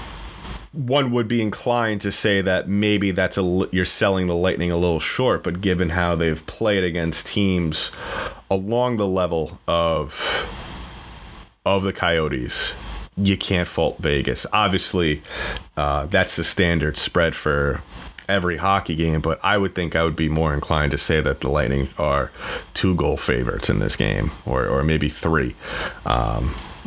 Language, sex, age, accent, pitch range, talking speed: English, male, 30-49, American, 80-100 Hz, 160 wpm